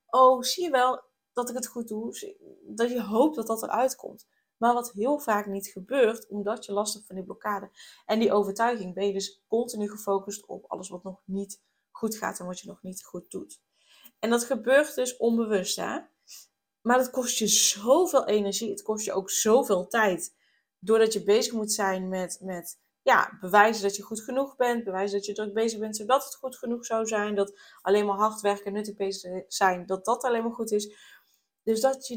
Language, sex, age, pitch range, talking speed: Dutch, female, 20-39, 200-245 Hz, 210 wpm